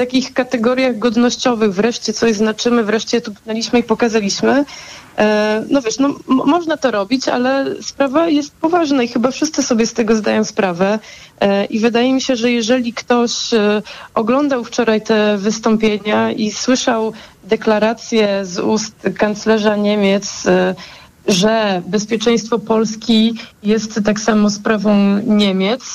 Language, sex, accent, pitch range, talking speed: Polish, female, native, 210-240 Hz, 130 wpm